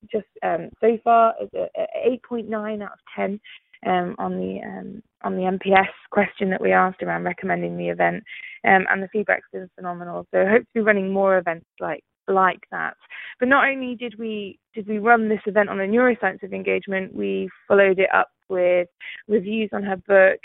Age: 20-39